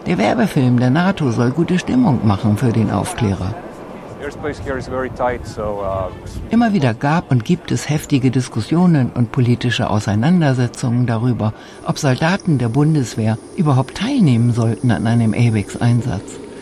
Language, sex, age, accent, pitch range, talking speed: German, female, 60-79, German, 115-155 Hz, 125 wpm